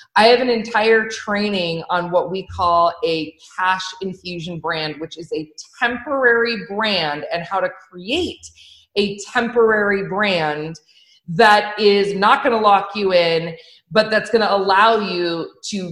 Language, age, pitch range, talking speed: English, 30-49, 175-225 Hz, 150 wpm